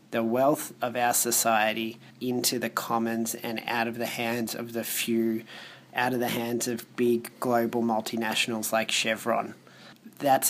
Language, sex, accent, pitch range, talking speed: English, male, Australian, 115-130 Hz, 155 wpm